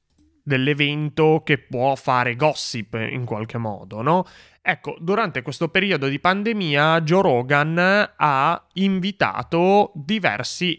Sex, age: male, 20-39